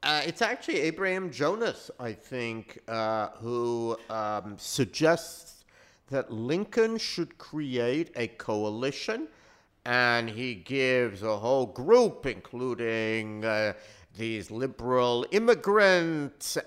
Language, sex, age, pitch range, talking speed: English, male, 50-69, 110-170 Hz, 100 wpm